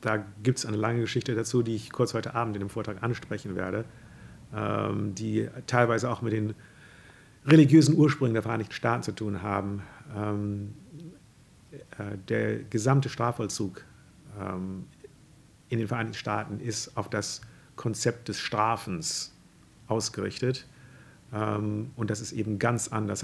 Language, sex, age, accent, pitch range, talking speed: German, male, 50-69, German, 105-125 Hz, 130 wpm